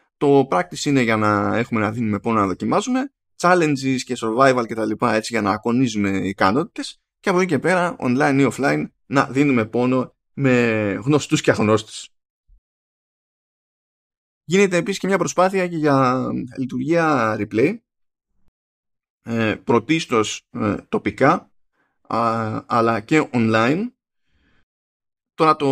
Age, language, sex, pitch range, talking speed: 20-39, Greek, male, 110-155 Hz, 120 wpm